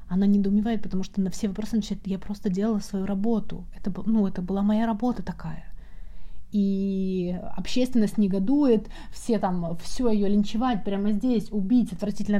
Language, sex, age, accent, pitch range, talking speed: Russian, female, 30-49, native, 190-240 Hz, 150 wpm